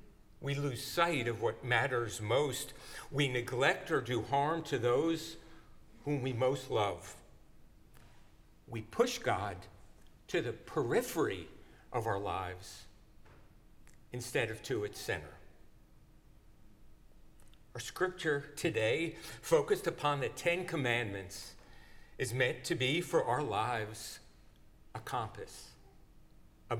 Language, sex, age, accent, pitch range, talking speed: English, male, 50-69, American, 105-160 Hz, 110 wpm